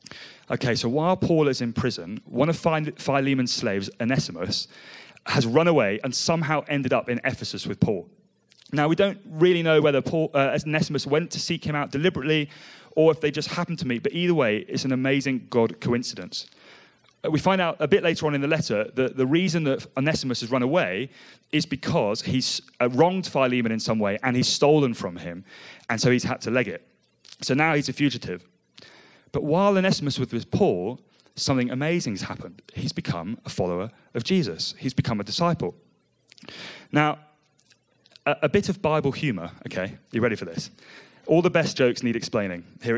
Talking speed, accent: 185 wpm, British